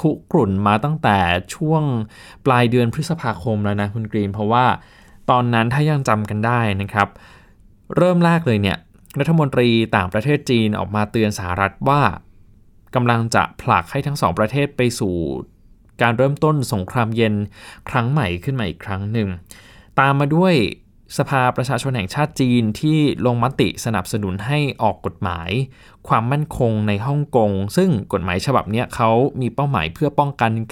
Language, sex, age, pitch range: Thai, male, 20-39, 100-140 Hz